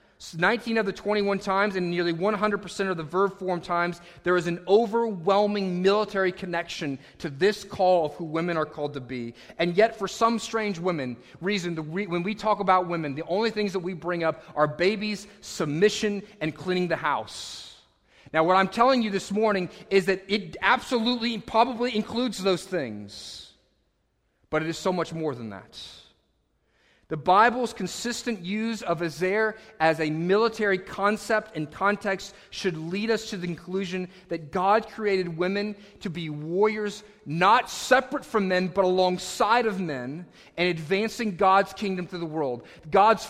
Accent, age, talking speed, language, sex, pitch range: American, 30-49, 165 wpm, English, male, 170-210 Hz